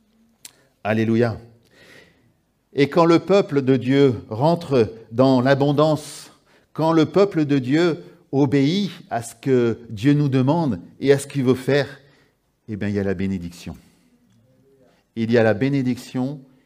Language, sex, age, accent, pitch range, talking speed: French, male, 50-69, French, 120-160 Hz, 145 wpm